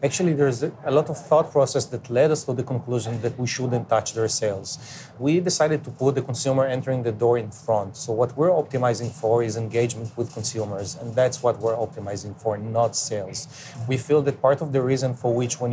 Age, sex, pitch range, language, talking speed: 30-49, male, 115-140 Hz, English, 220 wpm